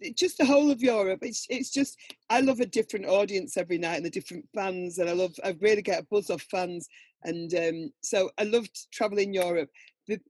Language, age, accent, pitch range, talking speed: English, 40-59, British, 180-230 Hz, 215 wpm